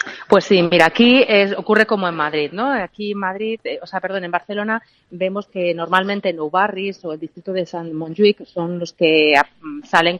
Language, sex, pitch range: Spanish, female, 155-195 Hz